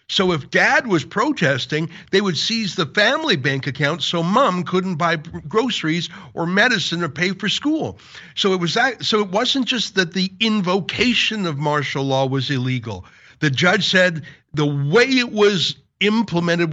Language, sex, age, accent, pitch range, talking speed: English, male, 60-79, American, 155-205 Hz, 170 wpm